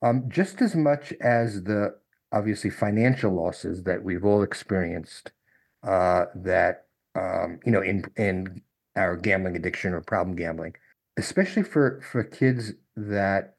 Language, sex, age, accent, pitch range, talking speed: English, male, 50-69, American, 105-145 Hz, 135 wpm